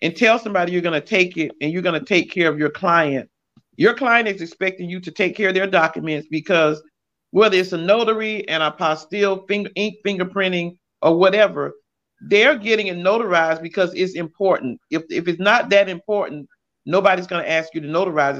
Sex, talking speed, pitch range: male, 190 wpm, 160-200 Hz